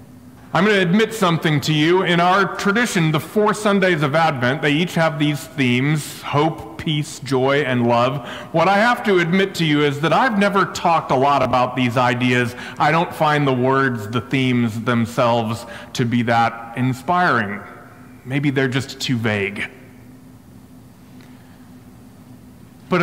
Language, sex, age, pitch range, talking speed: English, male, 30-49, 125-165 Hz, 155 wpm